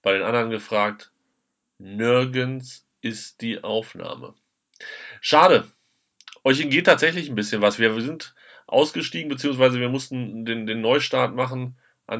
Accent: German